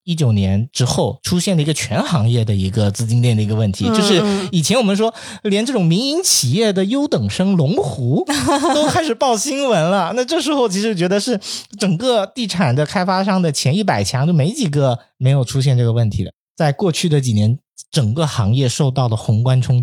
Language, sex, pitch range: Chinese, male, 115-175 Hz